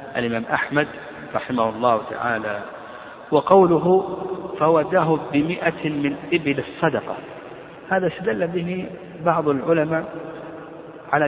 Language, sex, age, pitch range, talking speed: Arabic, male, 50-69, 125-165 Hz, 90 wpm